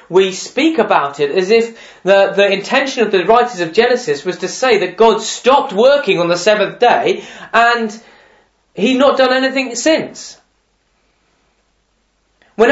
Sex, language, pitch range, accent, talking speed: male, English, 200-275 Hz, British, 150 wpm